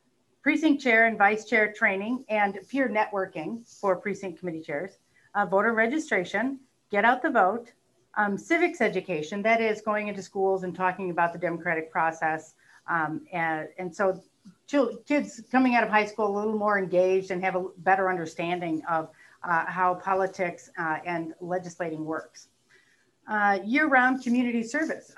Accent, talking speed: American, 155 wpm